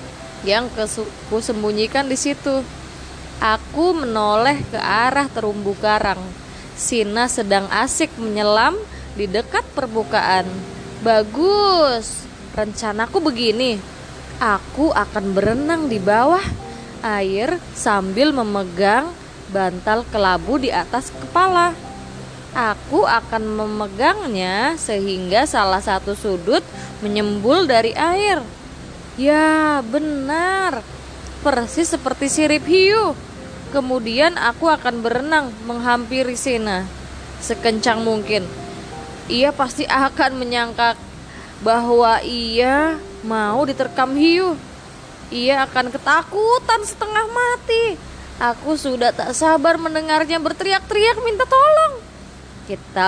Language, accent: Indonesian, native